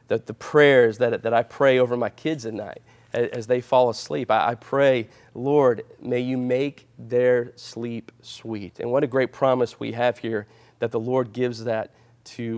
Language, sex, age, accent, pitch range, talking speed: English, male, 40-59, American, 115-145 Hz, 185 wpm